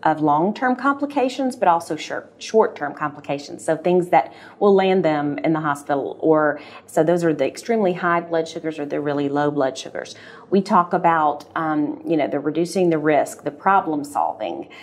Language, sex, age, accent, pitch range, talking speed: English, female, 40-59, American, 155-200 Hz, 180 wpm